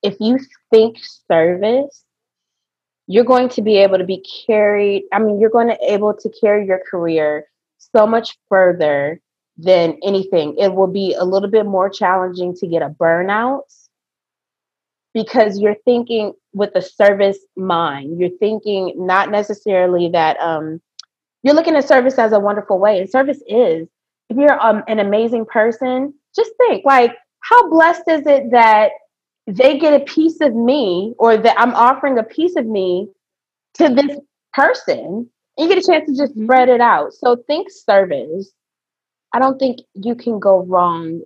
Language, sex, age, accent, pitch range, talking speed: English, female, 20-39, American, 185-245 Hz, 165 wpm